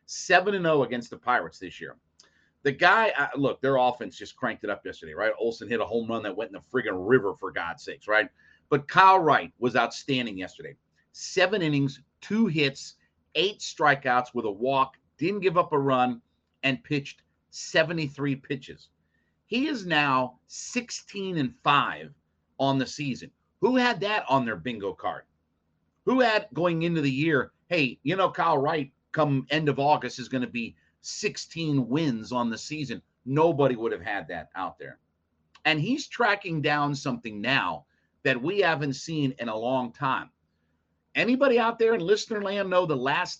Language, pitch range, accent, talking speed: English, 125-175 Hz, American, 175 wpm